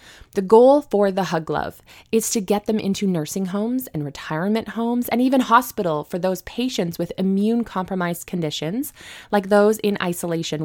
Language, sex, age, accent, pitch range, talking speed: English, female, 20-39, American, 175-240 Hz, 165 wpm